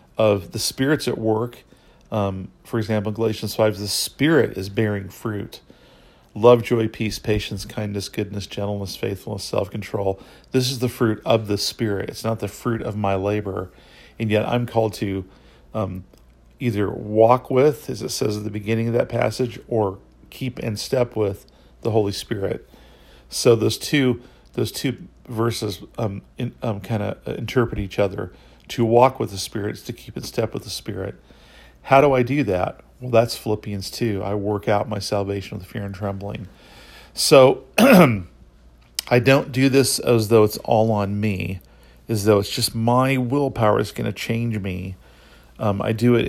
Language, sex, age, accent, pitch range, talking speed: English, male, 40-59, American, 100-120 Hz, 170 wpm